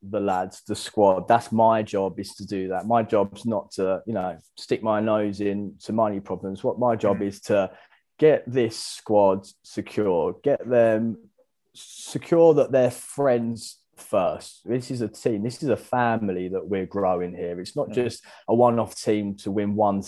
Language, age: English, 20-39